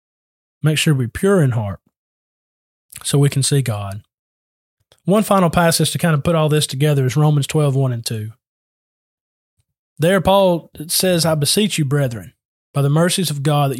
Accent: American